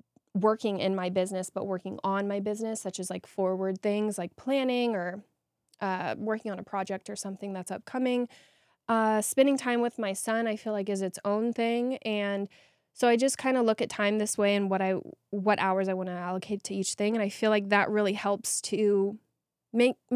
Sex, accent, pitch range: female, American, 195-225 Hz